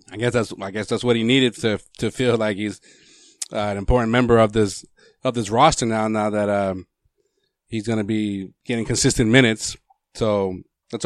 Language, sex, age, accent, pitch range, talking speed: English, male, 30-49, American, 105-125 Hz, 195 wpm